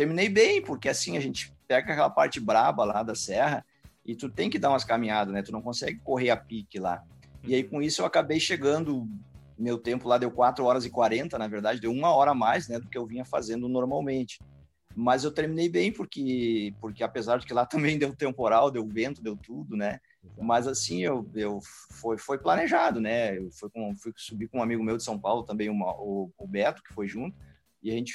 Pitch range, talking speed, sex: 105-130 Hz, 225 wpm, male